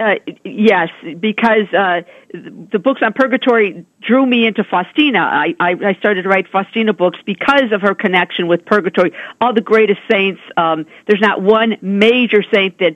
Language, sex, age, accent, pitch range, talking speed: English, female, 50-69, American, 180-220 Hz, 170 wpm